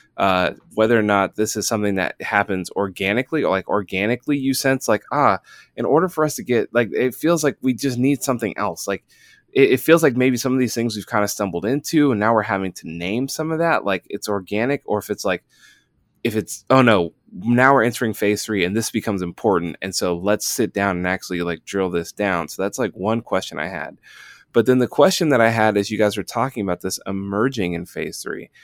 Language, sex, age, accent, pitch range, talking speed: English, male, 20-39, American, 95-125 Hz, 235 wpm